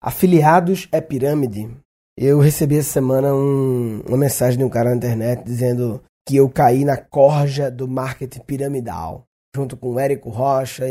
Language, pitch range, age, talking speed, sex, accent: Portuguese, 135-180 Hz, 20-39, 160 wpm, male, Brazilian